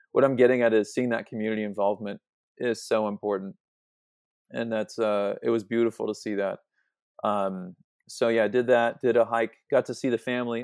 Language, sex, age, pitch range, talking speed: English, male, 30-49, 105-125 Hz, 195 wpm